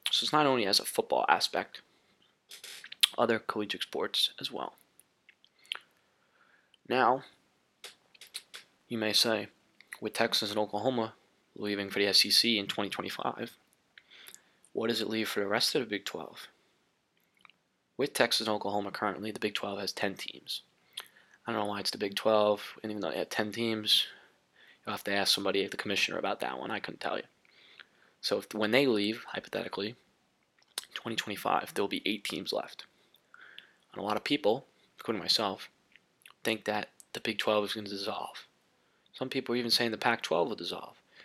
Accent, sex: American, male